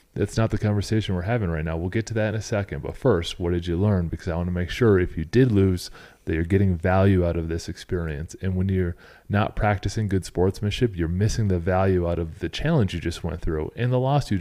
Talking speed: 260 wpm